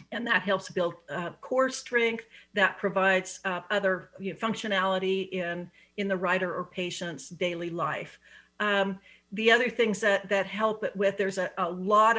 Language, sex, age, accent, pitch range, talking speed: English, female, 50-69, American, 175-205 Hz, 160 wpm